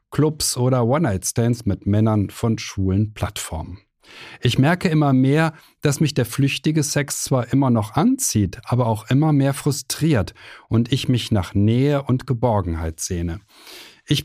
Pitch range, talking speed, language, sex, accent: 105-140 Hz, 145 wpm, German, male, German